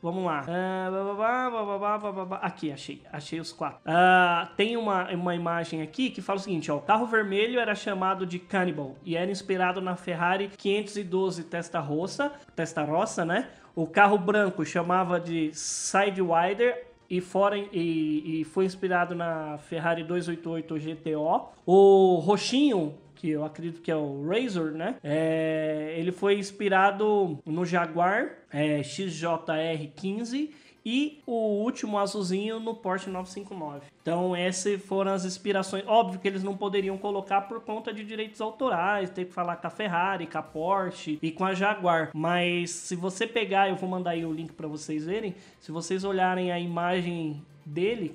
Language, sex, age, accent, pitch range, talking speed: Portuguese, male, 20-39, Brazilian, 165-200 Hz, 150 wpm